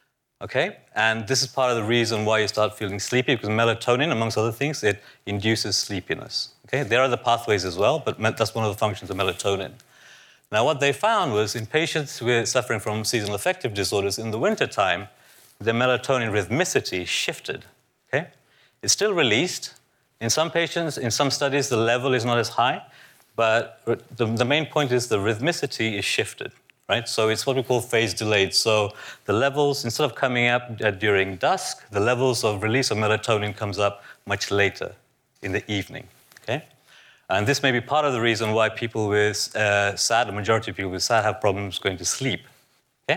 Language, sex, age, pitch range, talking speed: English, male, 30-49, 105-135 Hz, 195 wpm